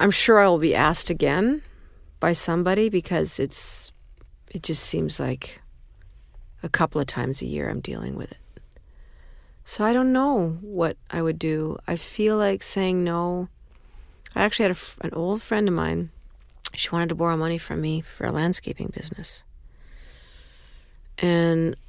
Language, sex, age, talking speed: English, female, 40-59, 155 wpm